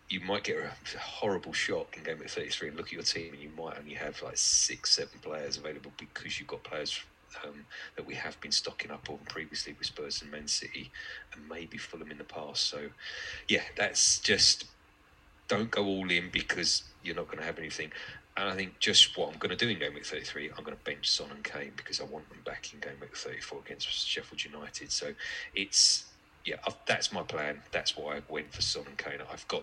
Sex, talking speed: male, 225 wpm